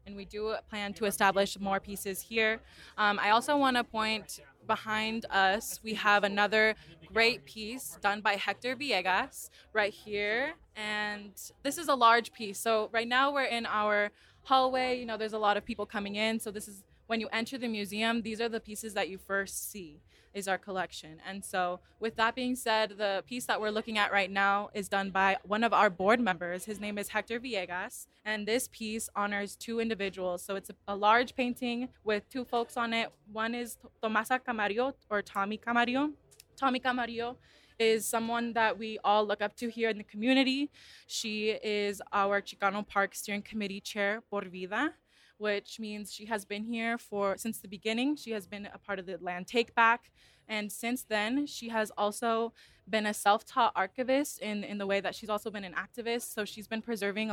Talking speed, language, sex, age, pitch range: 200 wpm, English, female, 20-39, 200-230 Hz